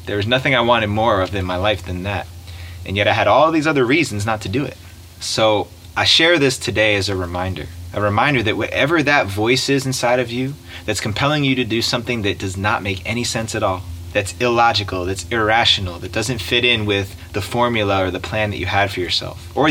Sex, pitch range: male, 90-115 Hz